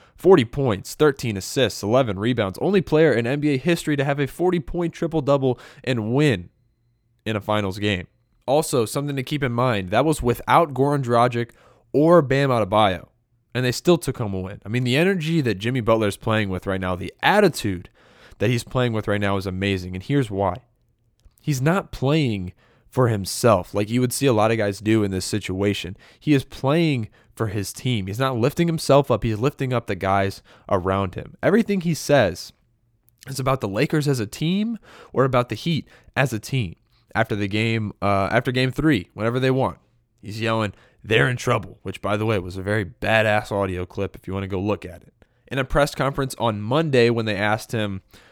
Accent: American